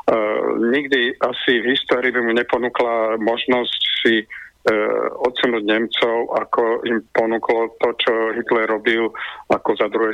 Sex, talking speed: male, 135 wpm